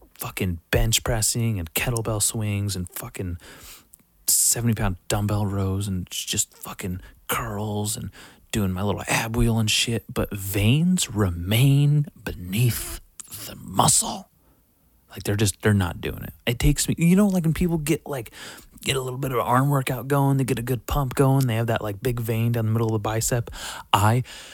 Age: 30-49